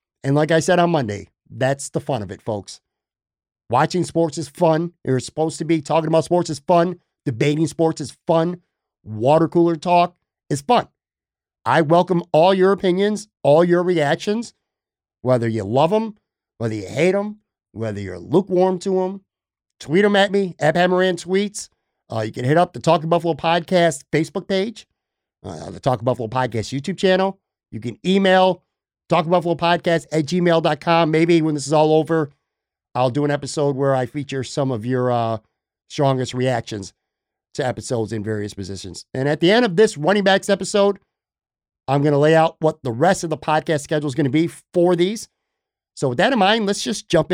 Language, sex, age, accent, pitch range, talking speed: English, male, 50-69, American, 140-185 Hz, 180 wpm